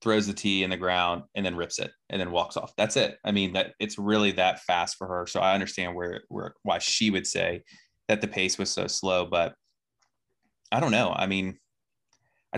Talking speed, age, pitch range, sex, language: 225 wpm, 20-39, 90-105 Hz, male, English